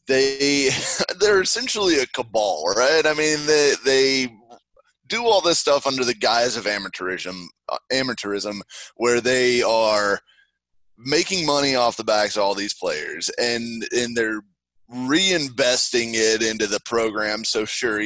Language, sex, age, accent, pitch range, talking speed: English, male, 20-39, American, 105-145 Hz, 140 wpm